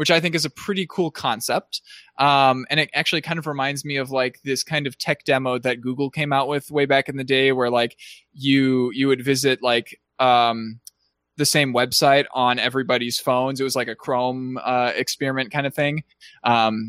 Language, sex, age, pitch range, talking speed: English, male, 20-39, 120-145 Hz, 205 wpm